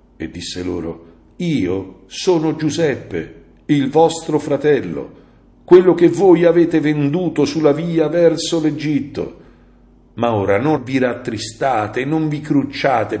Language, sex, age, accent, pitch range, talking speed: Italian, male, 50-69, native, 100-135 Hz, 125 wpm